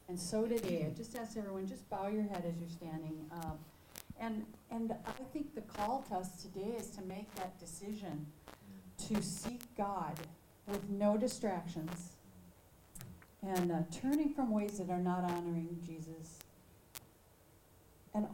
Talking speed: 145 wpm